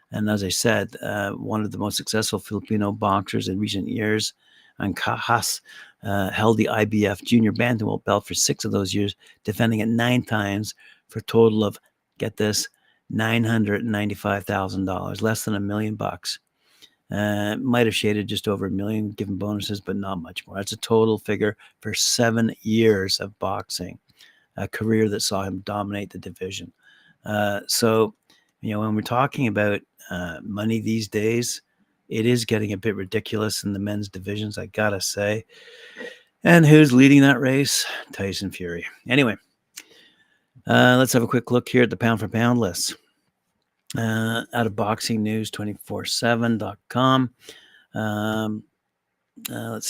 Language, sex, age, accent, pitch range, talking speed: English, male, 60-79, American, 100-115 Hz, 155 wpm